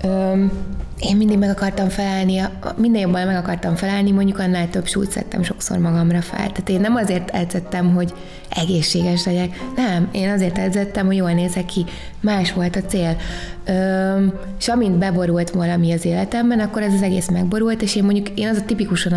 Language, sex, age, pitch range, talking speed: Hungarian, female, 20-39, 180-205 Hz, 180 wpm